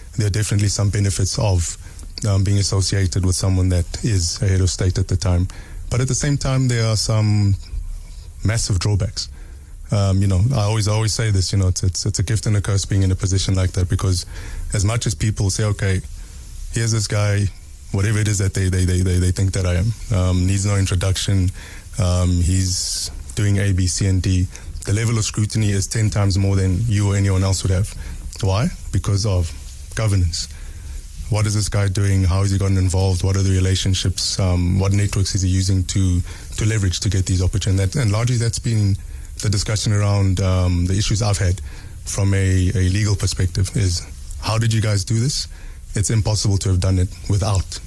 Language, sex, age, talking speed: English, male, 20-39, 210 wpm